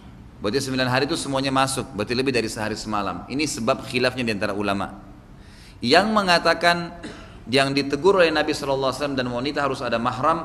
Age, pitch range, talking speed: 30-49, 120-160 Hz, 165 wpm